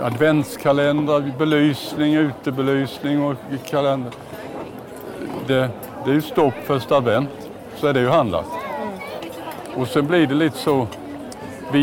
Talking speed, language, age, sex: 120 wpm, English, 60-79, male